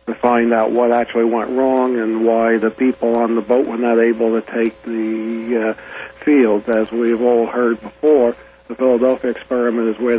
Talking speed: 190 wpm